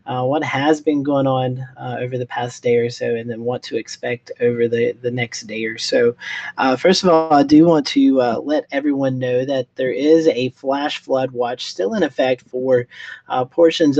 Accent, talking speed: American, 215 wpm